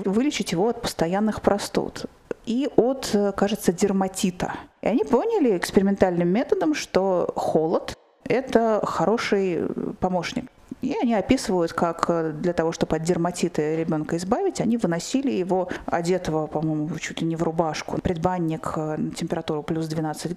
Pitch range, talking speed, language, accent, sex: 175-225 Hz, 130 wpm, Russian, native, female